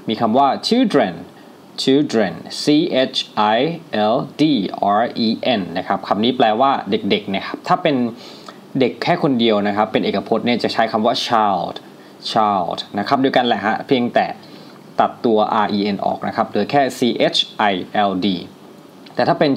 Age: 20-39